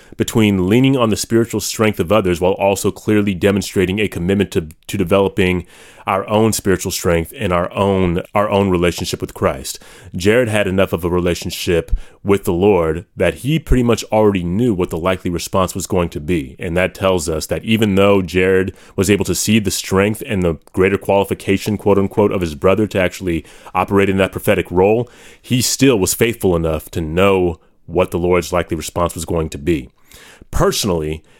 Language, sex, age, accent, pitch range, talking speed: English, male, 30-49, American, 90-115 Hz, 185 wpm